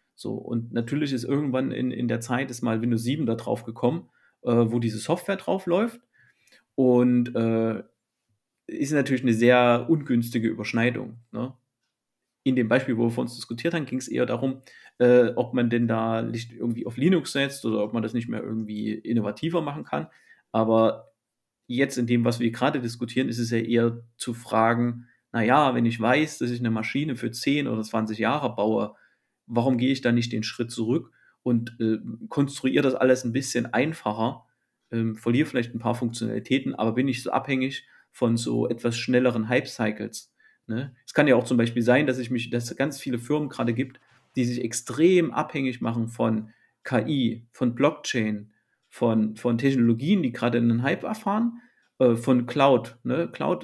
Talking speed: 180 wpm